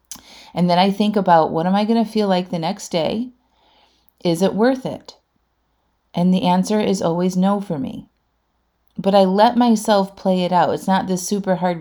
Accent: American